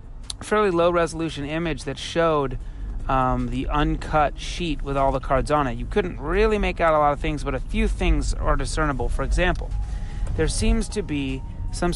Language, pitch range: English, 120-155 Hz